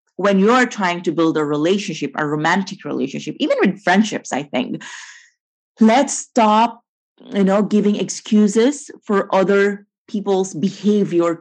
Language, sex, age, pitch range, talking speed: English, female, 30-49, 170-235 Hz, 130 wpm